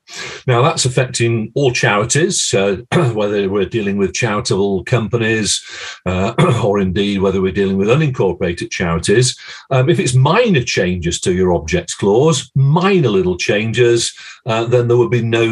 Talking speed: 150 wpm